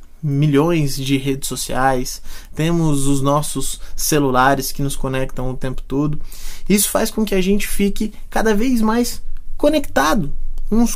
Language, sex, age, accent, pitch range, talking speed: Portuguese, male, 20-39, Brazilian, 145-210 Hz, 140 wpm